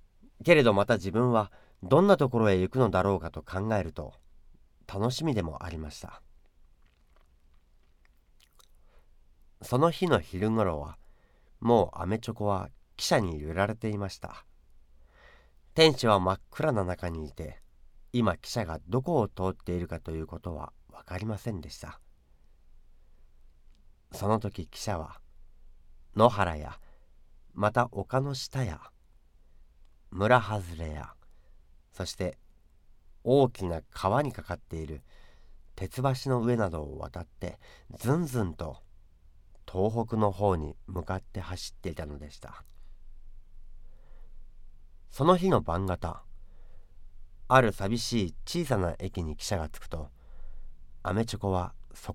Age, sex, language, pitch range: 40-59, male, Japanese, 75-110 Hz